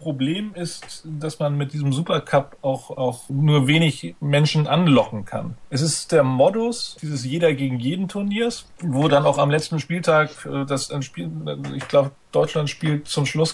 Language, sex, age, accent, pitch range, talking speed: German, male, 30-49, German, 135-165 Hz, 165 wpm